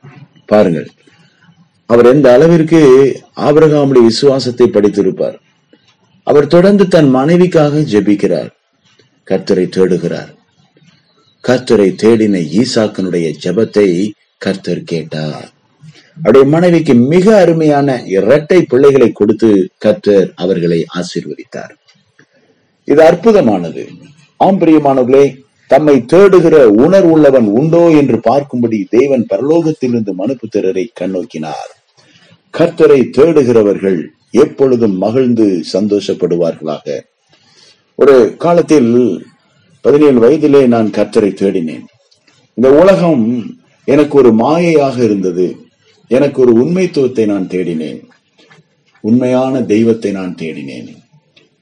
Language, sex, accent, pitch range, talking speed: Tamil, male, native, 105-160 Hz, 85 wpm